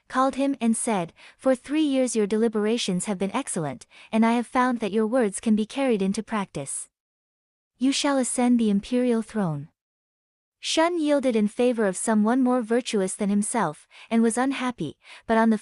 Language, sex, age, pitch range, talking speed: English, female, 20-39, 205-255 Hz, 175 wpm